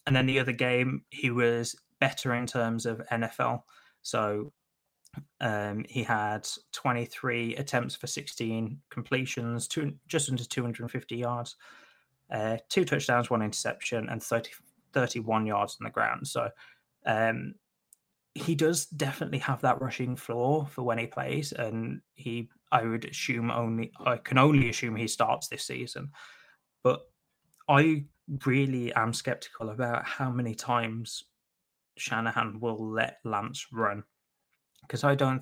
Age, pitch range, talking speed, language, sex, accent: 20-39, 110-135 Hz, 140 wpm, English, male, British